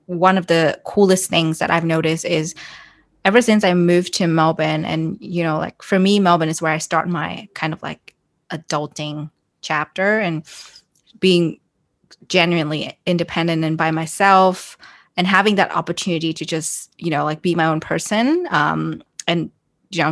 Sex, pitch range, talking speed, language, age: female, 160-185 Hz, 165 wpm, English, 20-39